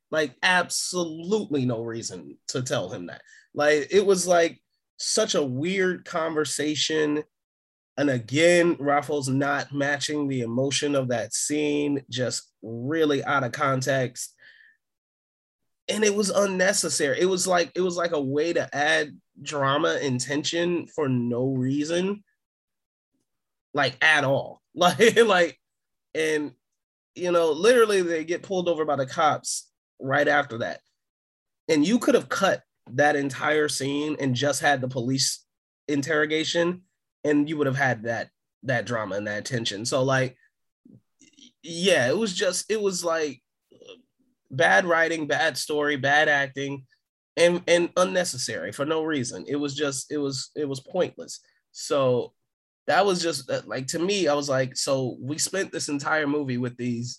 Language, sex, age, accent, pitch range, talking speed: English, male, 20-39, American, 135-175 Hz, 150 wpm